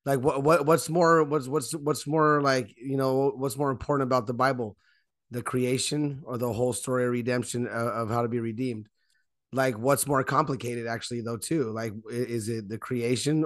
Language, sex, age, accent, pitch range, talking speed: English, male, 30-49, American, 125-145 Hz, 195 wpm